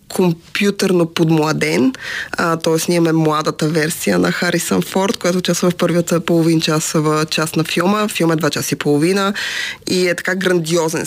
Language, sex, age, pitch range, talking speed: Bulgarian, female, 20-39, 160-200 Hz, 170 wpm